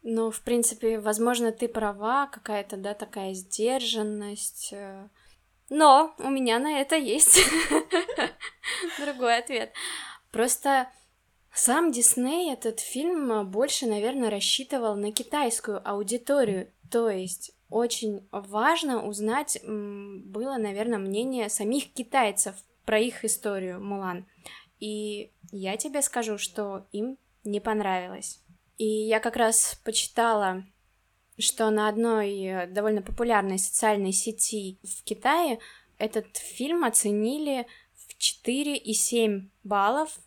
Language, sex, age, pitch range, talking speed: Russian, female, 20-39, 205-245 Hz, 105 wpm